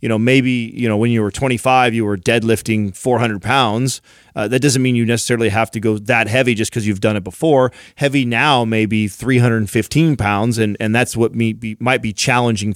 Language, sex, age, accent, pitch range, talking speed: English, male, 30-49, American, 110-130 Hz, 205 wpm